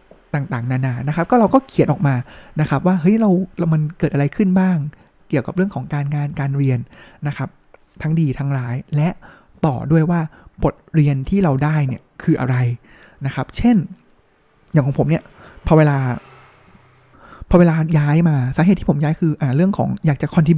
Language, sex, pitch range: Thai, male, 140-180 Hz